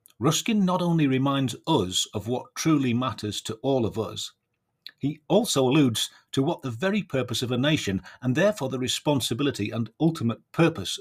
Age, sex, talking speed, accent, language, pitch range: 40-59, male, 170 wpm, British, English, 105-135 Hz